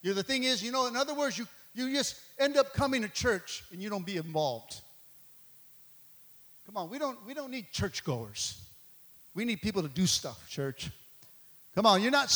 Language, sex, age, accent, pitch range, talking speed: English, male, 50-69, American, 150-215 Hz, 195 wpm